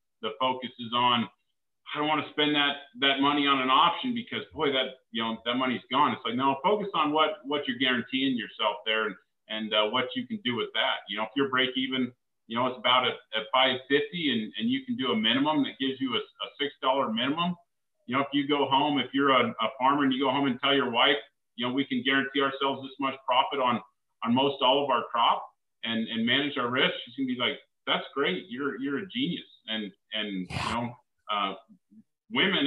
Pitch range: 125-160 Hz